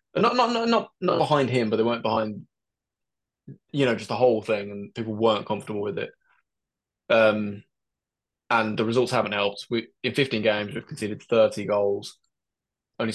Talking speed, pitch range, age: 170 wpm, 105-125 Hz, 20-39